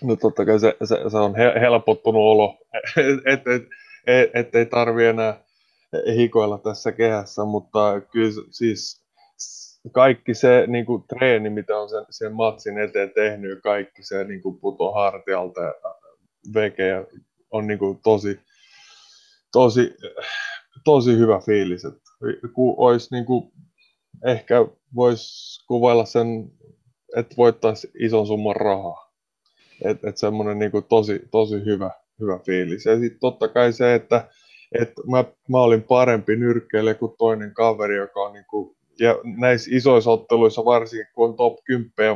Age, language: 20-39, Finnish